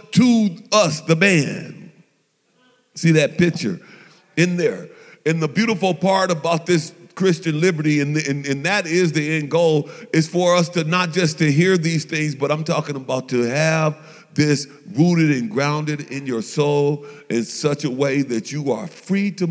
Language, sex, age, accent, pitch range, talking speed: English, male, 40-59, American, 155-190 Hz, 175 wpm